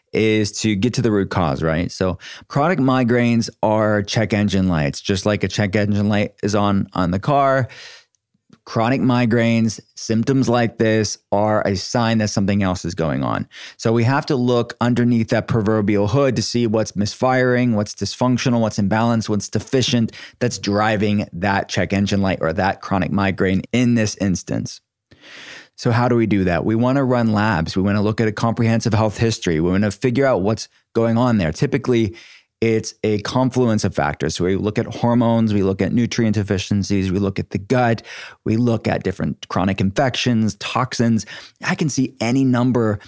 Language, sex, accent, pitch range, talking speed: English, male, American, 100-120 Hz, 185 wpm